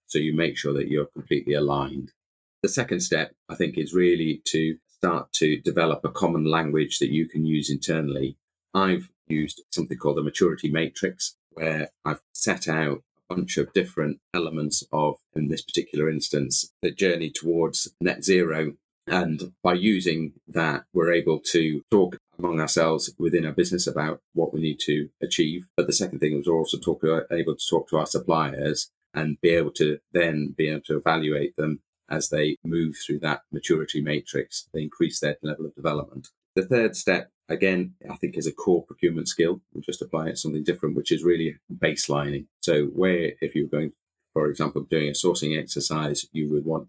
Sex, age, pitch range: male, 30-49, 75-85 Hz